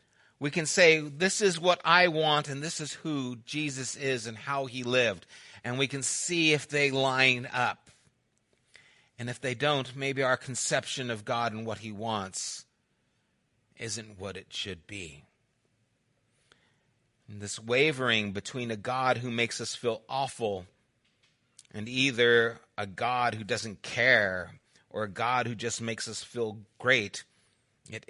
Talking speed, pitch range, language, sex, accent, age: 150 wpm, 105-130 Hz, English, male, American, 40-59